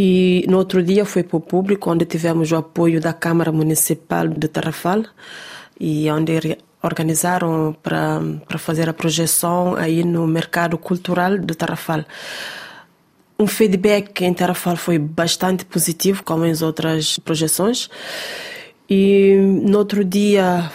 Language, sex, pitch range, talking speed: Portuguese, female, 165-190 Hz, 135 wpm